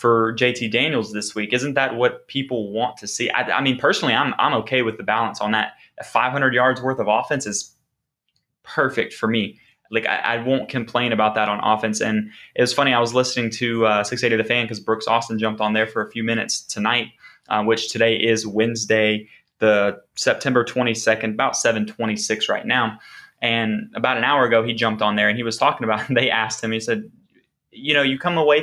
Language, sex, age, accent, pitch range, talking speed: English, male, 20-39, American, 110-130 Hz, 210 wpm